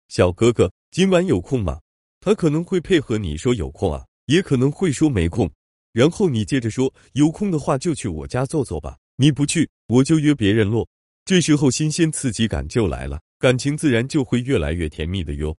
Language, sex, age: Chinese, male, 30-49